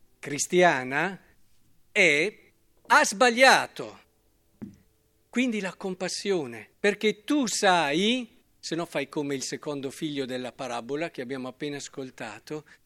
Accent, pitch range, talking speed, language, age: native, 165-235 Hz, 105 wpm, Italian, 50-69